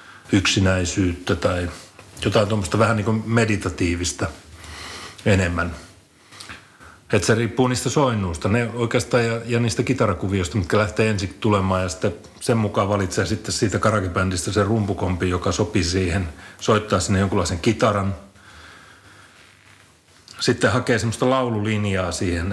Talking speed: 120 wpm